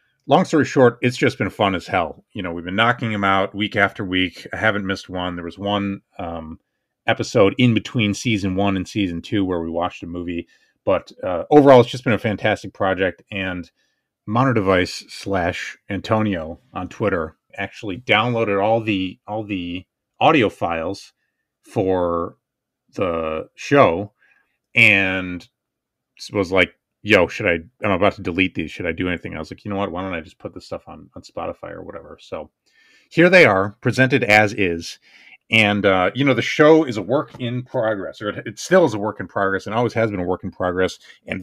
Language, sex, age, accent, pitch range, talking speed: English, male, 30-49, American, 95-125 Hz, 195 wpm